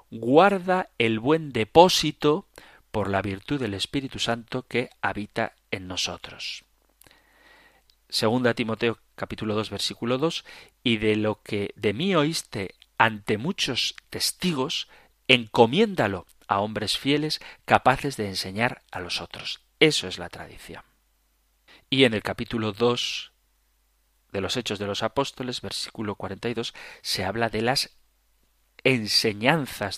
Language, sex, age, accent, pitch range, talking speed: Spanish, male, 40-59, Spanish, 100-145 Hz, 125 wpm